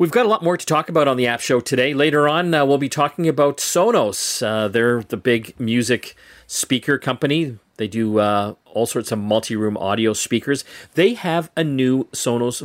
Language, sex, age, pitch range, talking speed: English, male, 40-59, 115-155 Hz, 200 wpm